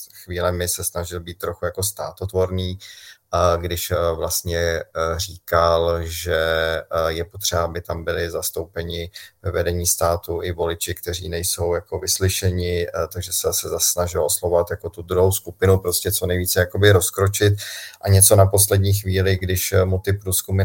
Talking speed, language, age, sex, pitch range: 150 wpm, Czech, 30-49, male, 90-100 Hz